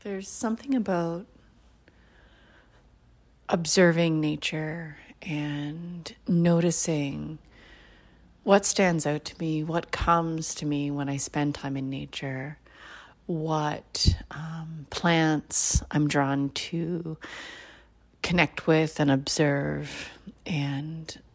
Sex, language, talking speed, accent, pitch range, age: female, English, 95 wpm, American, 140-175 Hz, 30-49